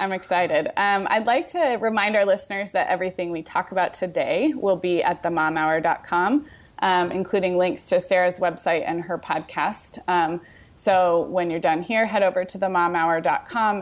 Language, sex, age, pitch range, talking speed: English, female, 20-39, 170-215 Hz, 165 wpm